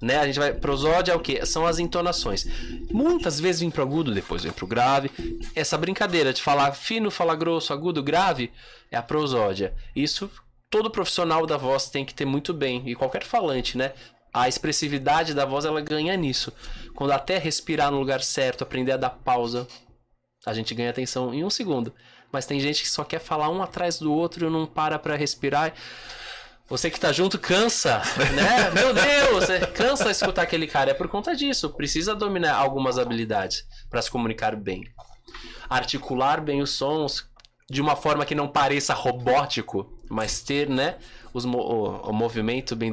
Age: 20-39